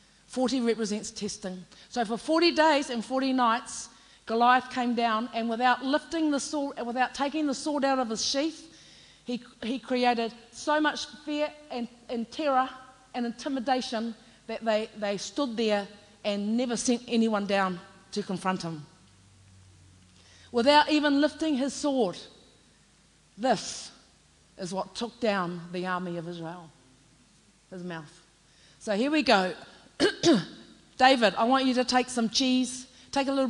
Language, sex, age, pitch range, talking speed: English, female, 40-59, 190-255 Hz, 145 wpm